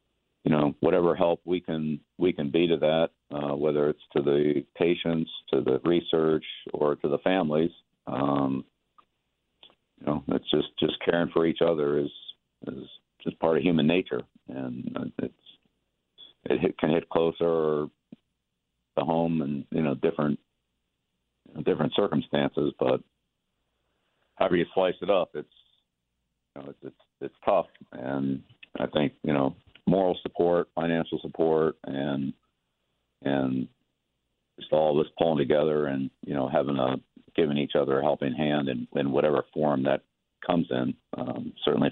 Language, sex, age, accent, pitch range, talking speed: English, male, 50-69, American, 65-80 Hz, 155 wpm